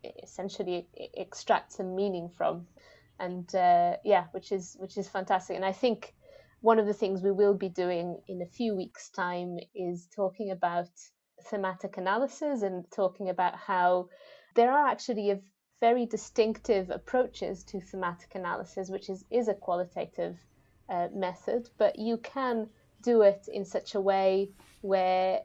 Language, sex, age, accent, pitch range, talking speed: English, female, 20-39, British, 185-220 Hz, 155 wpm